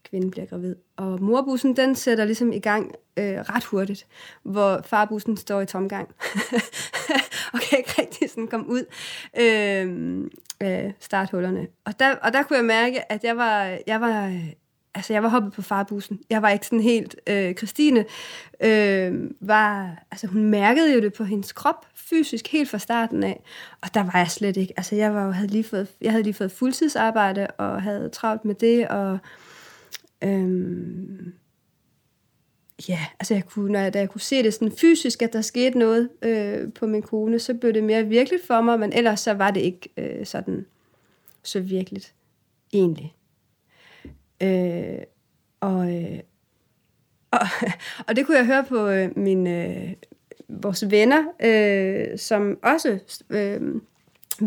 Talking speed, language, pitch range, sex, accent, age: 165 wpm, Danish, 195-235 Hz, female, native, 30-49